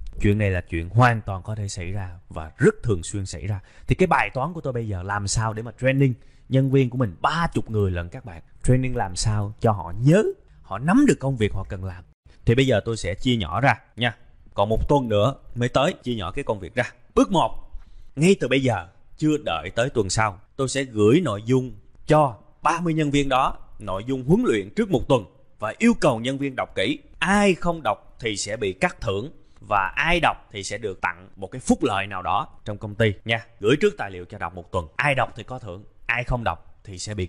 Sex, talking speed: male, 245 wpm